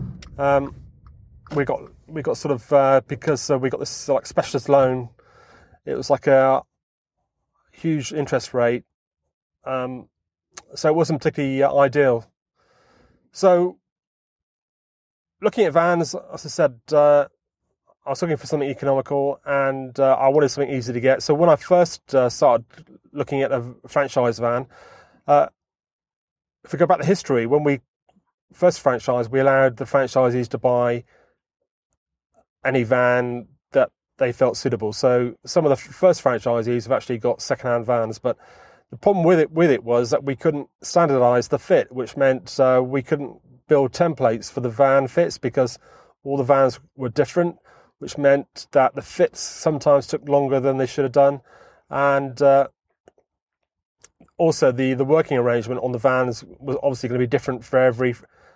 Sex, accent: male, British